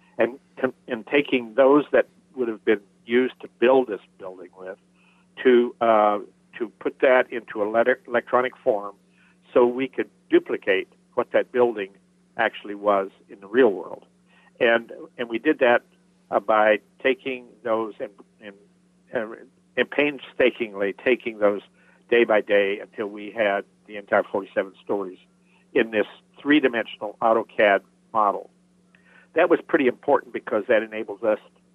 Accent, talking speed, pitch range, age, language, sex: American, 140 wpm, 105-175 Hz, 60-79, English, male